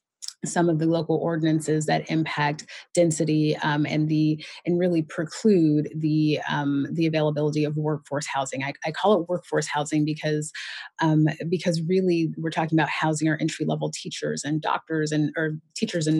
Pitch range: 150-165 Hz